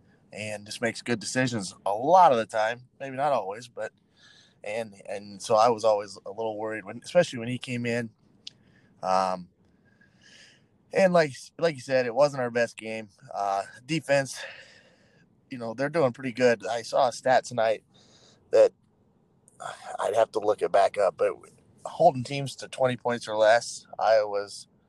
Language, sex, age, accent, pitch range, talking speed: English, male, 20-39, American, 110-130 Hz, 170 wpm